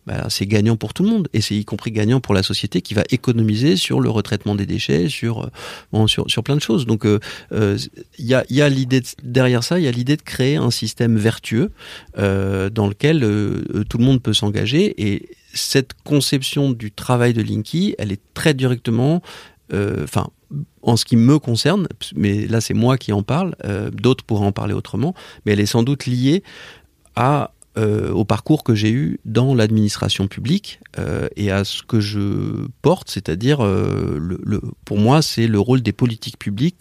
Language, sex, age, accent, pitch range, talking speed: French, male, 40-59, French, 105-130 Hz, 200 wpm